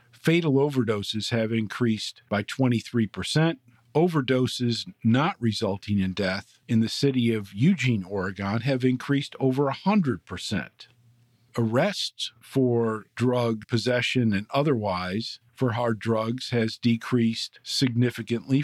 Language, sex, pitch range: English, male, 115-135 Hz